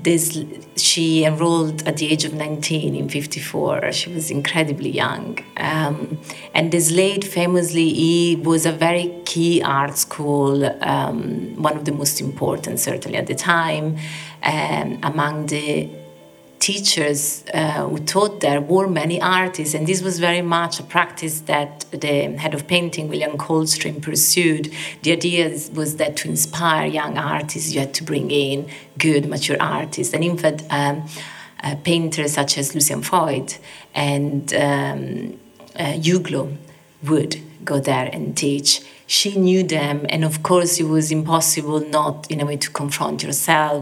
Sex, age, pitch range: female, 30-49, 145-165 Hz